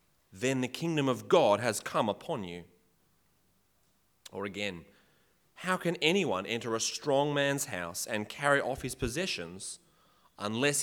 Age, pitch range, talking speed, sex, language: 30-49, 95-145 Hz, 140 wpm, male, English